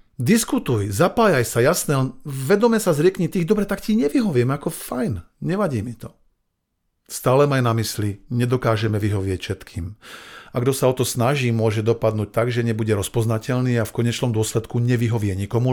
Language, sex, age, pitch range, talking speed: Slovak, male, 50-69, 115-150 Hz, 160 wpm